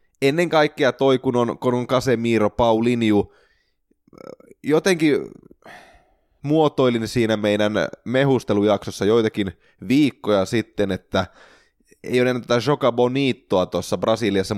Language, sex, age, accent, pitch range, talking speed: Finnish, male, 20-39, native, 105-135 Hz, 85 wpm